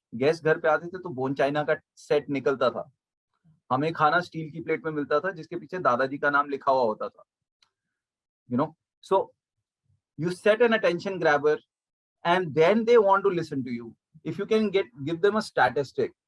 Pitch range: 120-160 Hz